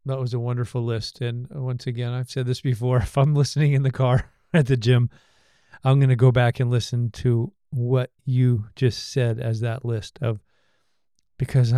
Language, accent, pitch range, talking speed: English, American, 120-135 Hz, 195 wpm